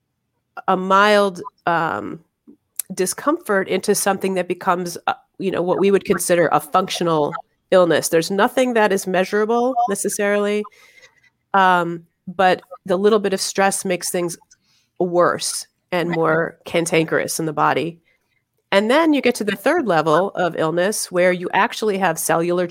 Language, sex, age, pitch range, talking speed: English, female, 30-49, 170-205 Hz, 145 wpm